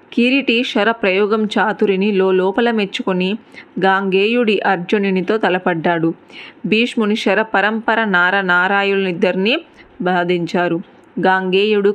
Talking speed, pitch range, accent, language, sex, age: 80 wpm, 190-225 Hz, native, Telugu, female, 20-39